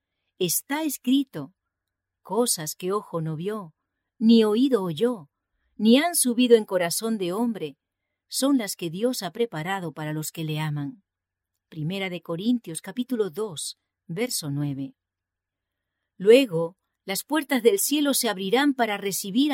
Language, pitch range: English, 155-235 Hz